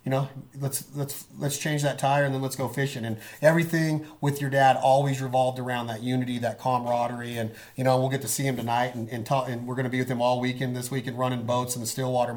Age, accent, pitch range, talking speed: 40-59, American, 130-150 Hz, 255 wpm